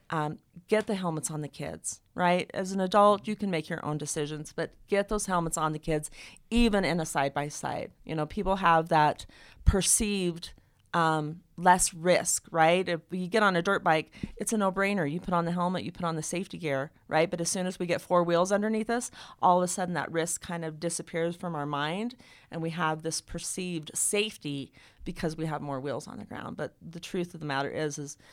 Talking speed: 225 wpm